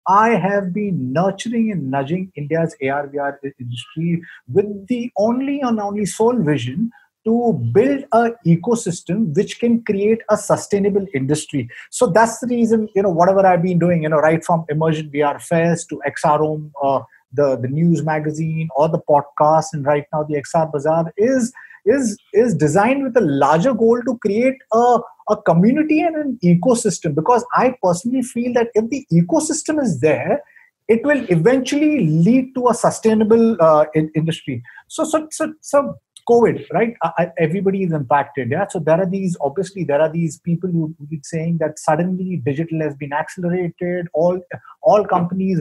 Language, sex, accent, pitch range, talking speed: English, male, Indian, 155-230 Hz, 165 wpm